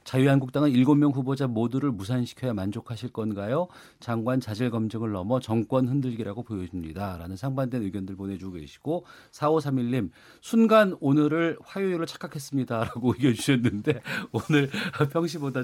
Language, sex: Korean, male